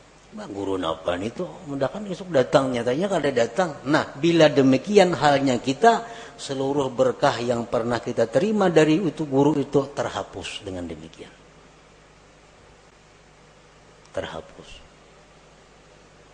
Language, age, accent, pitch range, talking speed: Indonesian, 40-59, native, 105-150 Hz, 105 wpm